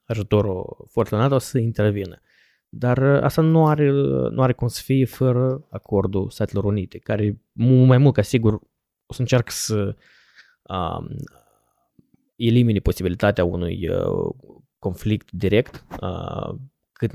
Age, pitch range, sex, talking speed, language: 20-39, 100-120 Hz, male, 125 wpm, Romanian